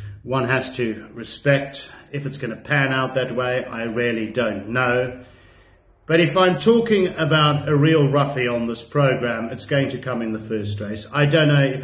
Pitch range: 115-150 Hz